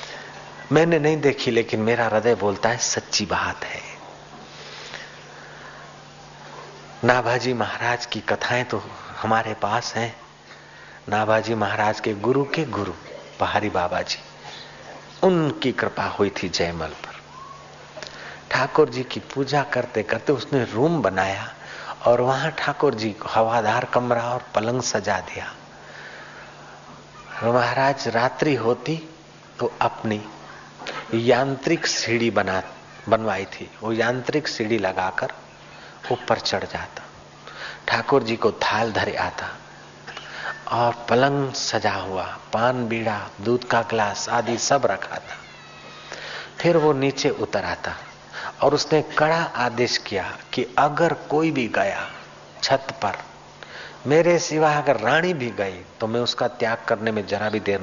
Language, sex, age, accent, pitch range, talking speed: Hindi, male, 50-69, native, 110-140 Hz, 130 wpm